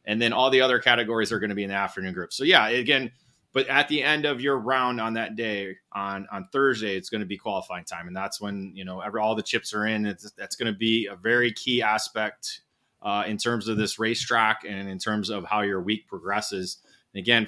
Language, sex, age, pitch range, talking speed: English, male, 20-39, 100-115 Hz, 235 wpm